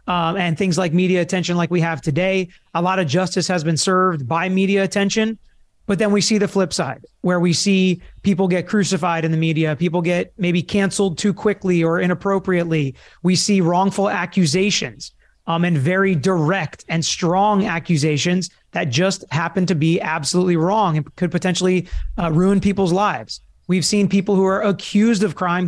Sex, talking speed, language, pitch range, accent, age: male, 180 wpm, English, 175-195 Hz, American, 30-49